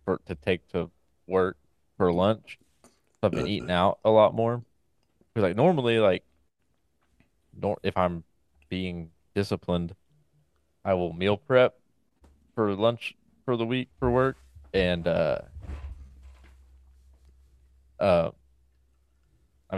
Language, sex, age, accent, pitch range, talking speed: English, male, 20-39, American, 70-95 Hz, 115 wpm